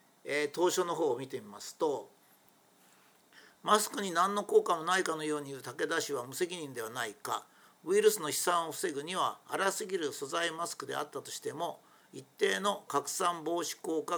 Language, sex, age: Japanese, male, 50-69